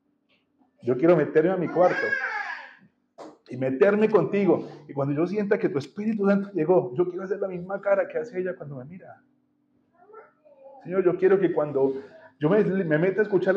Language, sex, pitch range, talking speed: Spanish, male, 160-210 Hz, 180 wpm